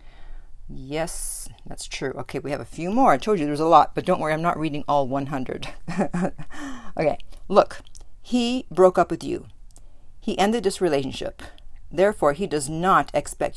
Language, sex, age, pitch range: English, female, 50-69, 150-195 Hz